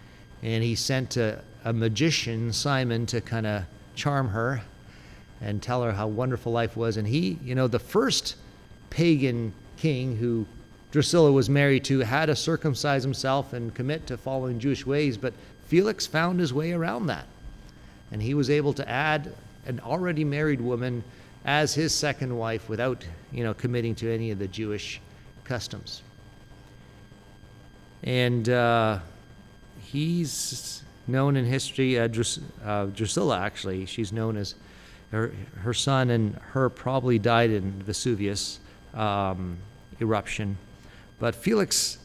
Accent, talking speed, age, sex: American, 140 wpm, 50-69, male